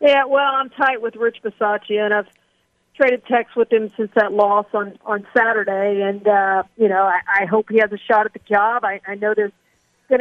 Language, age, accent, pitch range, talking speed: English, 50-69, American, 210-240 Hz, 225 wpm